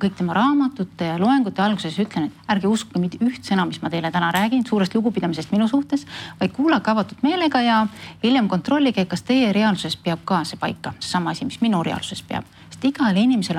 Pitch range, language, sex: 175-245 Hz, English, female